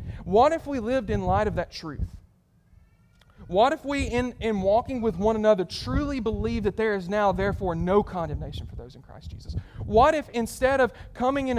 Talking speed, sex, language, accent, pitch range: 195 wpm, male, English, American, 195-255 Hz